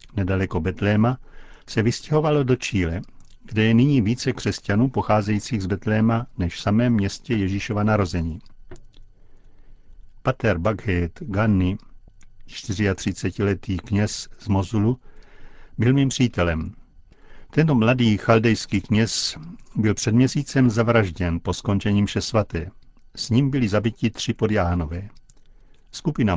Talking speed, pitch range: 110 wpm, 95-115 Hz